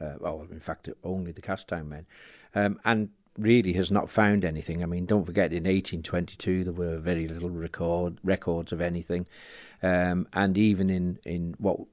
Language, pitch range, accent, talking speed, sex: English, 85-95 Hz, British, 185 wpm, male